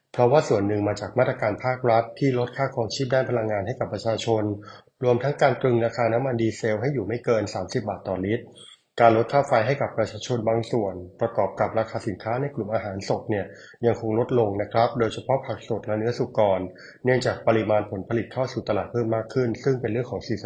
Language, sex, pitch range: Thai, male, 105-125 Hz